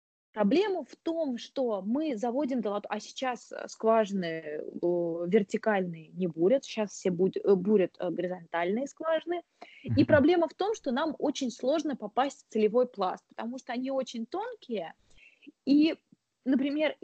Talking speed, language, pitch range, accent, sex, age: 130 wpm, Russian, 205-280 Hz, native, female, 20-39